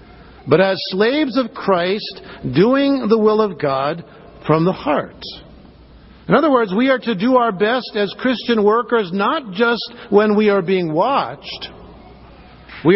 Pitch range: 185-245 Hz